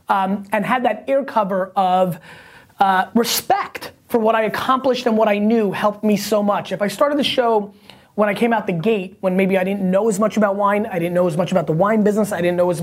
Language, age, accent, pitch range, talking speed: English, 20-39, American, 190-250 Hz, 255 wpm